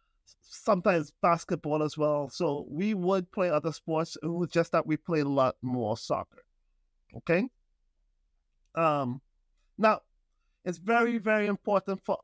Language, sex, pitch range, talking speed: English, male, 150-195 Hz, 135 wpm